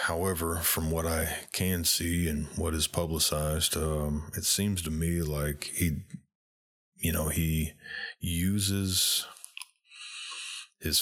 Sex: male